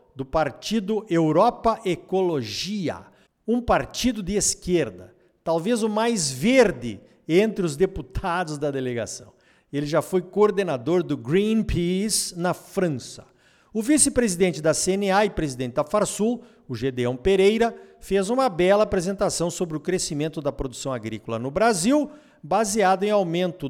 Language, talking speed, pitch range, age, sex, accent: Portuguese, 130 wpm, 140-215 Hz, 50-69, male, Brazilian